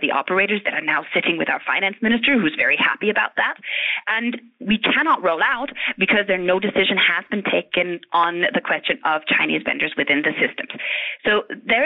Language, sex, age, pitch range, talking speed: English, female, 30-49, 175-235 Hz, 190 wpm